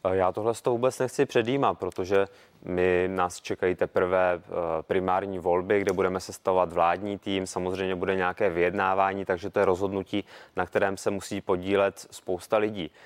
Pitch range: 95-105 Hz